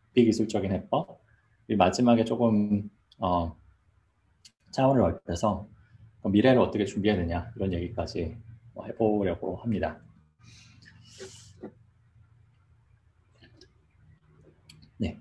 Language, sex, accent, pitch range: Korean, male, native, 95-115 Hz